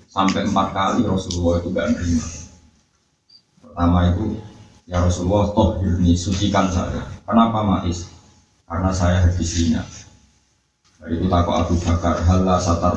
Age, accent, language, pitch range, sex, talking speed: 20-39, native, Indonesian, 85-105 Hz, male, 115 wpm